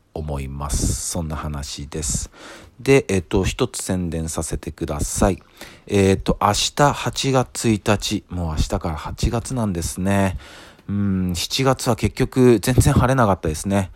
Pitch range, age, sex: 80-105 Hz, 40-59, male